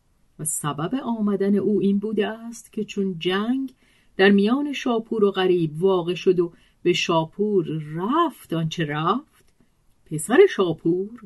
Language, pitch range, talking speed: Persian, 165-225 Hz, 135 wpm